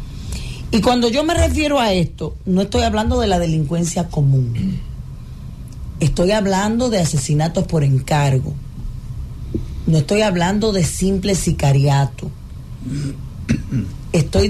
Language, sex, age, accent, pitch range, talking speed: Spanish, female, 40-59, American, 155-215 Hz, 110 wpm